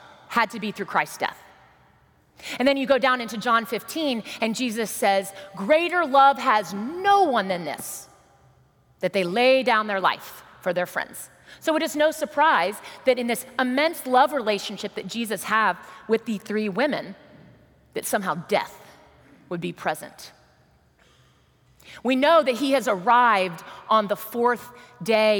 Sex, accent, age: female, American, 30-49